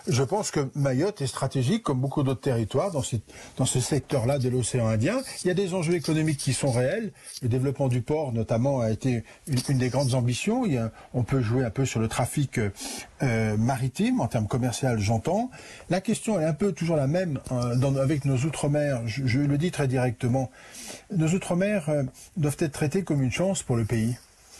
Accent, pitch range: French, 125-155 Hz